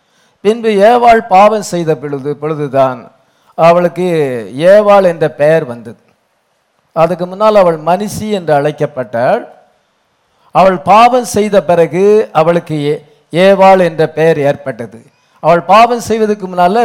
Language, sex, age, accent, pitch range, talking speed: English, male, 50-69, Indian, 150-210 Hz, 95 wpm